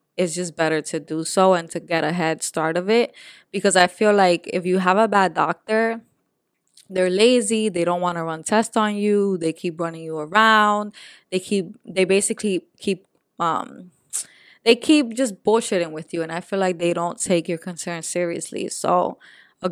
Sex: female